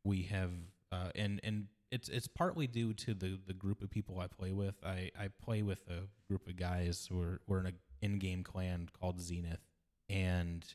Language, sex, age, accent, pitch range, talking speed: English, male, 20-39, American, 90-100 Hz, 205 wpm